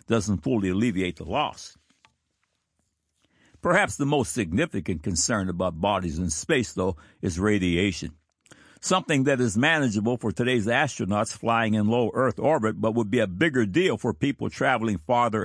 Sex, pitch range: male, 100-130 Hz